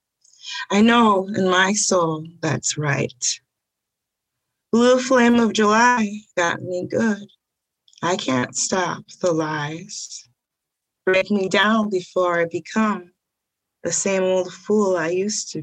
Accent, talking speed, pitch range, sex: American, 125 wpm, 175-220 Hz, female